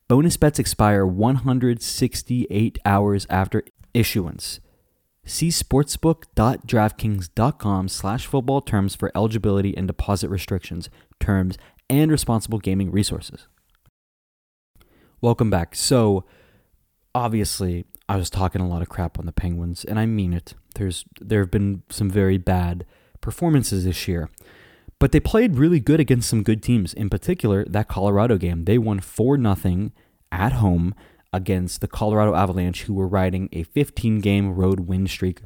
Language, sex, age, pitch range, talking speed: English, male, 20-39, 95-120 Hz, 135 wpm